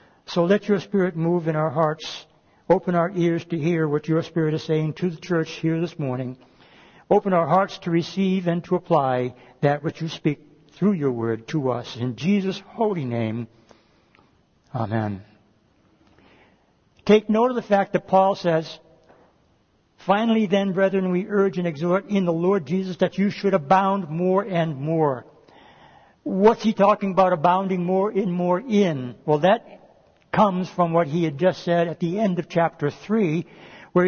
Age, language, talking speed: 60-79, English, 170 wpm